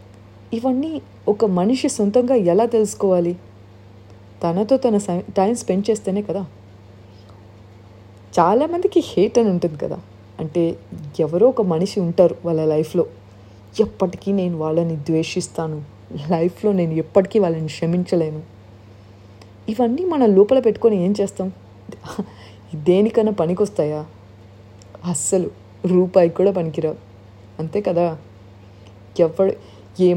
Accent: native